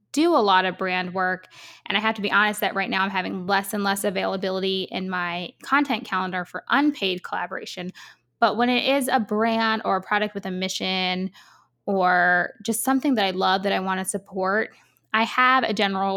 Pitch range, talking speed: 190-230 Hz, 205 wpm